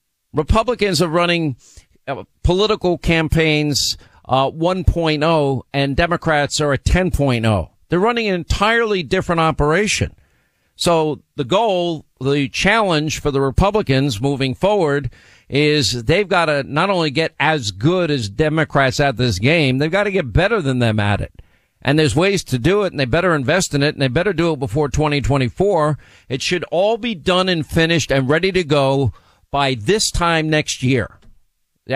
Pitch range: 130-165 Hz